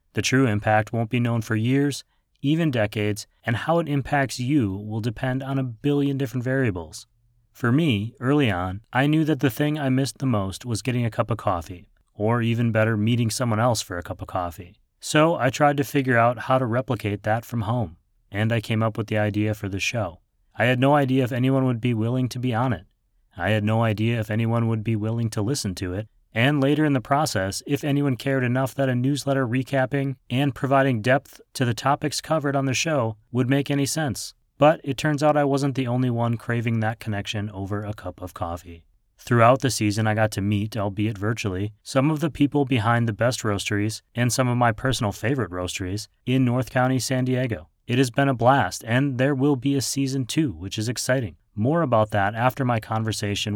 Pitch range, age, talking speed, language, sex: 105-135 Hz, 30-49, 215 wpm, English, male